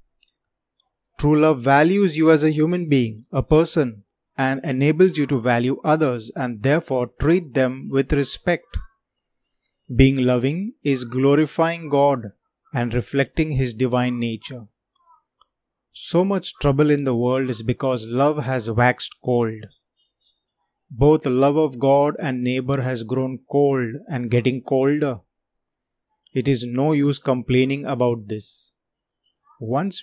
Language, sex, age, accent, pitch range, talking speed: Hindi, male, 20-39, native, 125-145 Hz, 130 wpm